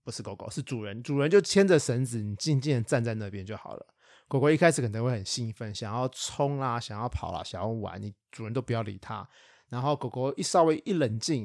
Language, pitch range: Chinese, 115-140 Hz